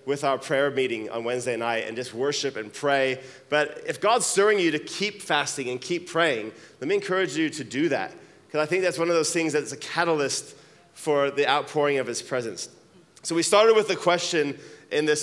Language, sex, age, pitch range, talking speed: English, male, 20-39, 145-180 Hz, 215 wpm